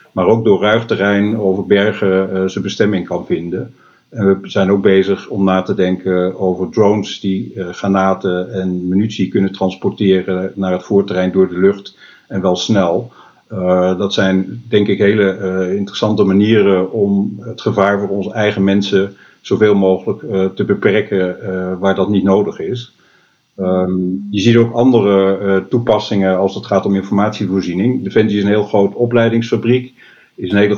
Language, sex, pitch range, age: Dutch, male, 95-105 Hz, 50-69